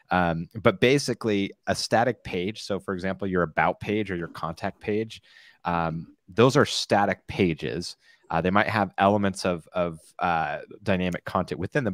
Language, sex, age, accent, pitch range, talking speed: English, male, 30-49, American, 85-105 Hz, 165 wpm